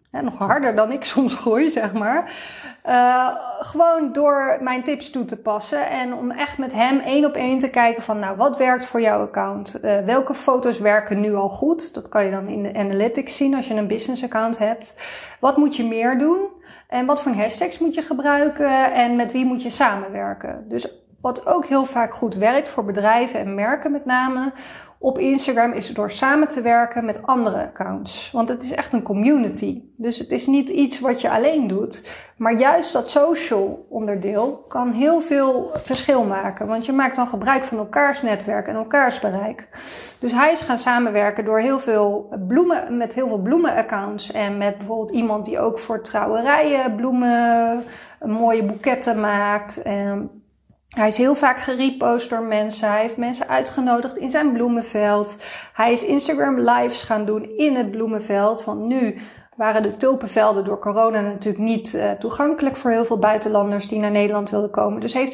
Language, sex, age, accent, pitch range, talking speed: Dutch, female, 30-49, Dutch, 215-270 Hz, 185 wpm